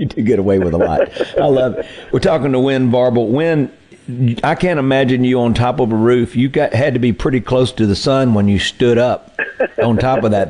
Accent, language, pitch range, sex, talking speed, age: American, English, 110-130 Hz, male, 245 wpm, 50-69